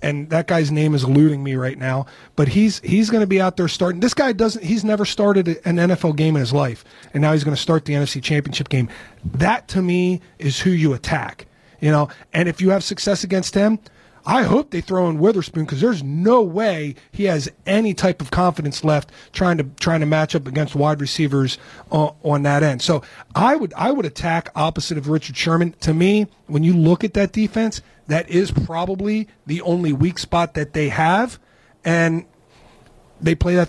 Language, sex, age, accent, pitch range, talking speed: English, male, 40-59, American, 145-180 Hz, 210 wpm